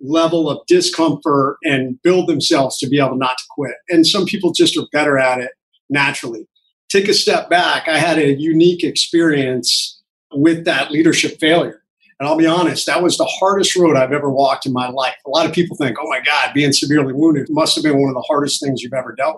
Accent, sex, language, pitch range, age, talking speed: American, male, English, 145-210 Hz, 50-69, 220 wpm